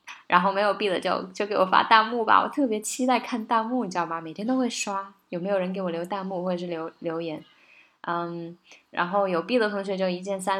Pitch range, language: 175-235 Hz, Chinese